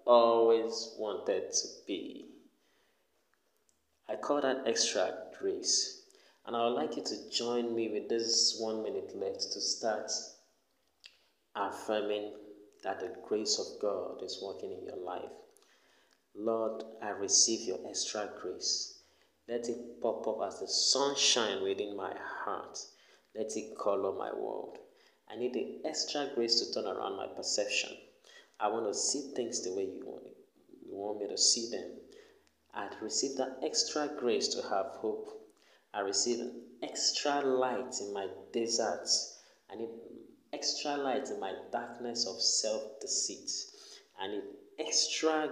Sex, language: male, English